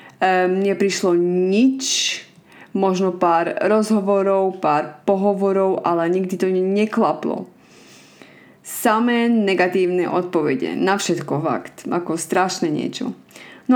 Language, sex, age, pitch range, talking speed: Slovak, female, 20-39, 175-215 Hz, 95 wpm